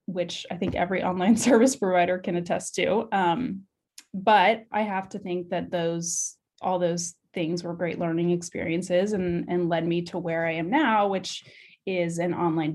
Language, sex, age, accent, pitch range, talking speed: English, female, 20-39, American, 175-220 Hz, 180 wpm